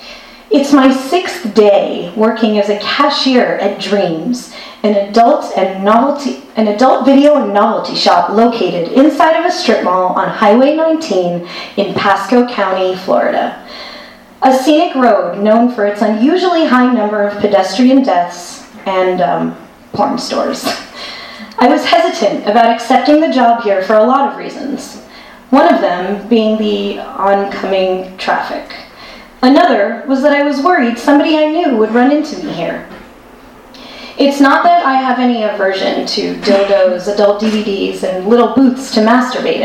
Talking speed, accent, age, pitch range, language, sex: 150 wpm, American, 30-49, 205-270 Hz, English, female